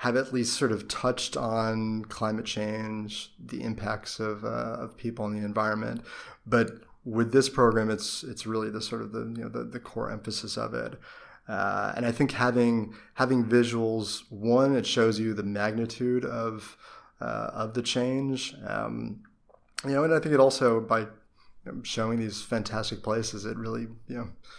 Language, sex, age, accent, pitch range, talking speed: English, male, 20-39, American, 105-120 Hz, 175 wpm